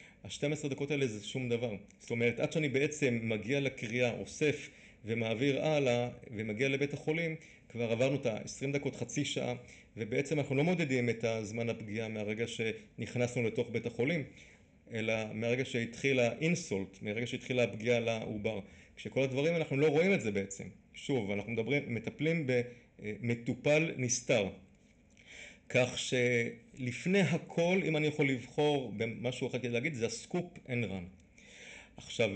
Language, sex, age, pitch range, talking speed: Hebrew, male, 30-49, 110-140 Hz, 145 wpm